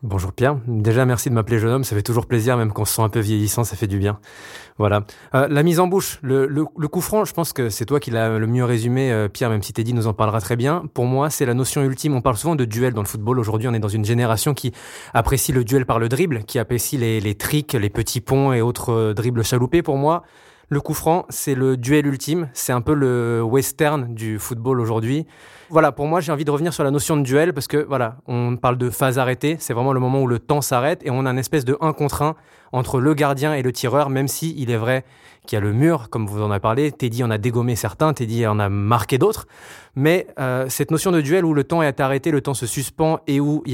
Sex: male